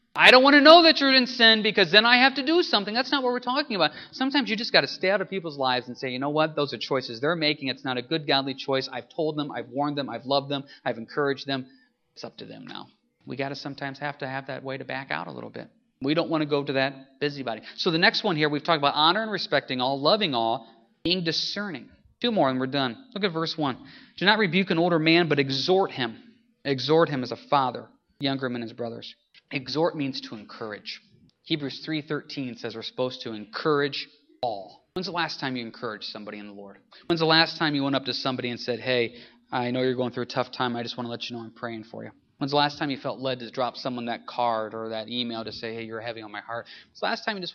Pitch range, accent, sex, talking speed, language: 125-170 Hz, American, male, 270 wpm, English